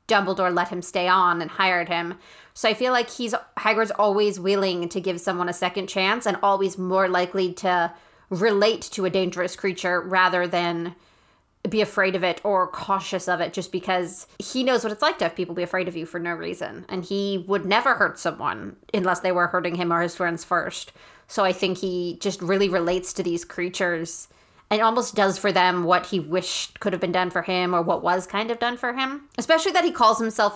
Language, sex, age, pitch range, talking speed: English, female, 20-39, 180-205 Hz, 220 wpm